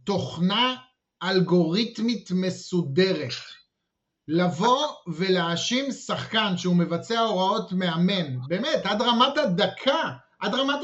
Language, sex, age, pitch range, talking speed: Hebrew, male, 30-49, 170-225 Hz, 90 wpm